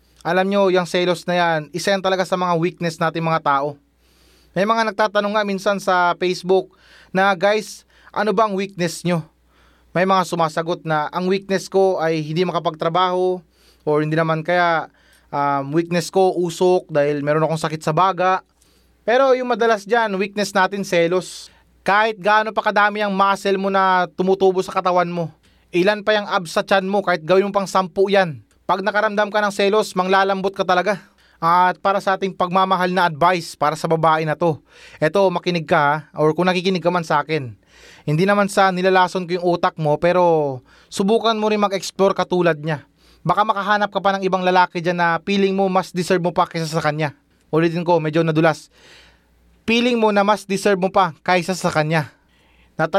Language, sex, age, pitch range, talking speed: Filipino, male, 20-39, 160-195 Hz, 180 wpm